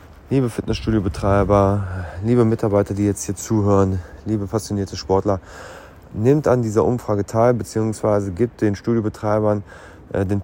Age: 30-49